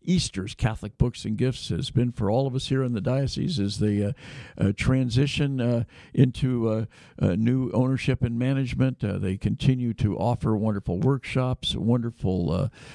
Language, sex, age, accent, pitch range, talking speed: English, male, 60-79, American, 115-140 Hz, 170 wpm